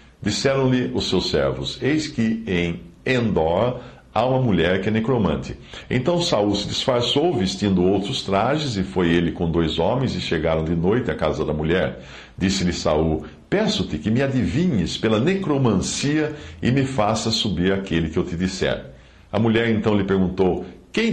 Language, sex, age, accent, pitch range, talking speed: Portuguese, male, 60-79, Brazilian, 85-125 Hz, 165 wpm